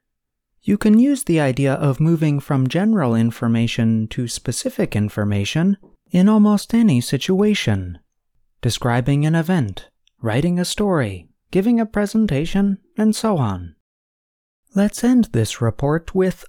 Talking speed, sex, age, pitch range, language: 120 wpm, male, 30-49, 120-195 Hz, English